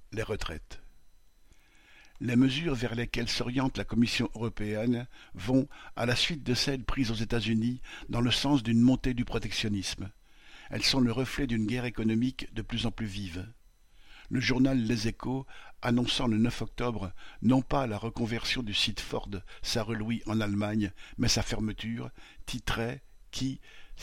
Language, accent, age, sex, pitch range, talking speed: French, French, 60-79, male, 105-125 Hz, 155 wpm